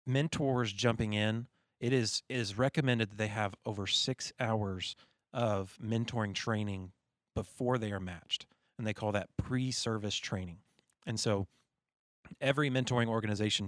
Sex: male